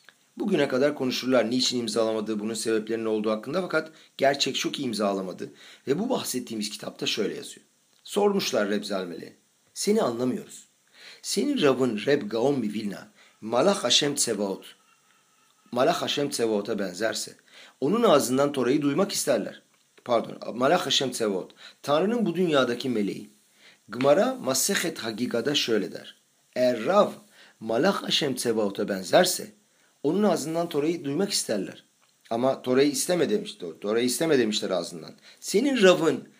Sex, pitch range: male, 110-175 Hz